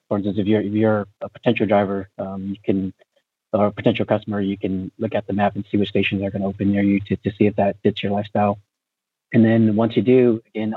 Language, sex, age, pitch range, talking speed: English, male, 30-49, 100-110 Hz, 255 wpm